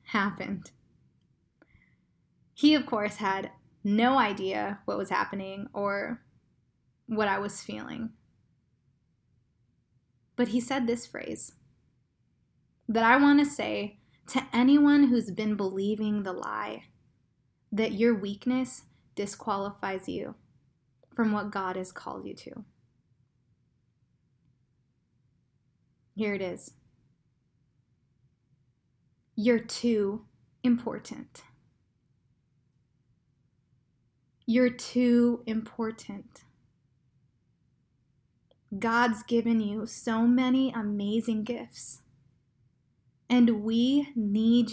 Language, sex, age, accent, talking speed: English, female, 10-29, American, 85 wpm